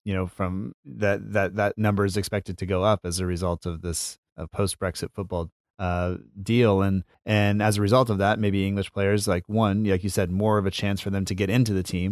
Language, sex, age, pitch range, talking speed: English, male, 30-49, 95-105 Hz, 245 wpm